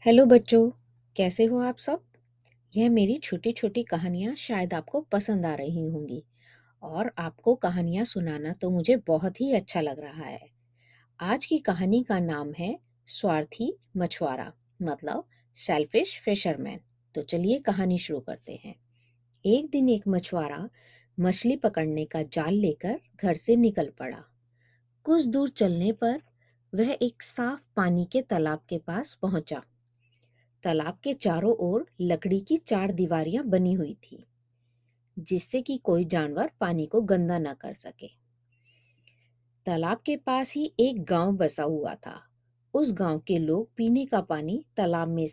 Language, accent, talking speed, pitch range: Hindi, native, 150 wpm, 145-225 Hz